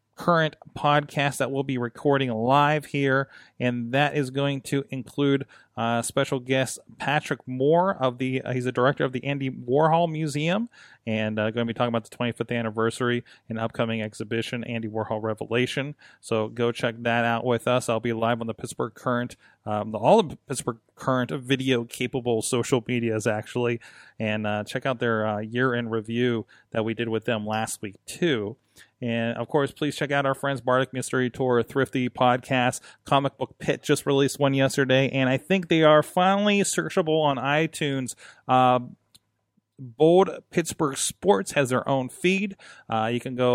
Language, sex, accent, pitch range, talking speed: English, male, American, 115-140 Hz, 175 wpm